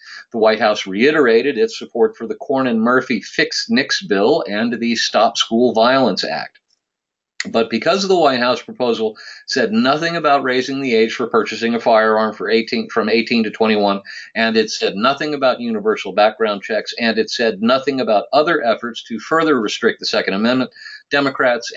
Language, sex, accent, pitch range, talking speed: English, male, American, 120-170 Hz, 170 wpm